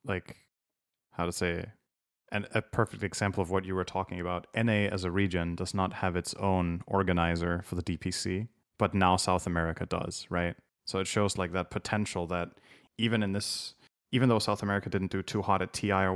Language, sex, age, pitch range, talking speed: English, male, 20-39, 90-105 Hz, 195 wpm